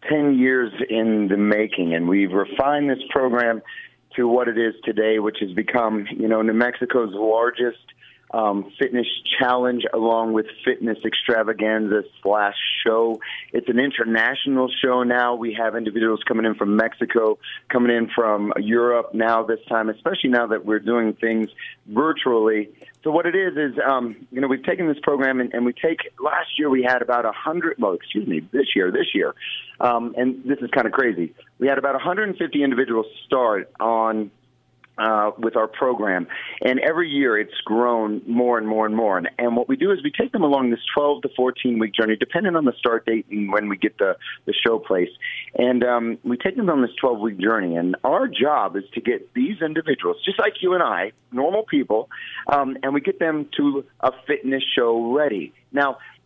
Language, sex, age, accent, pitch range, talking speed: English, male, 40-59, American, 110-135 Hz, 190 wpm